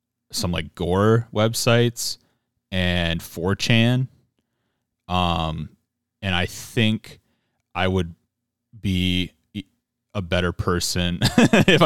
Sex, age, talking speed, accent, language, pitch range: male, 30-49, 85 wpm, American, English, 85-110 Hz